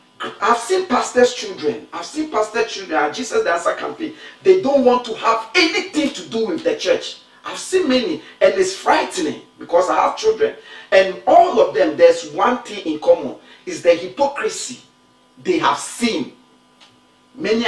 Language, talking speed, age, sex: English, 175 wpm, 50-69, male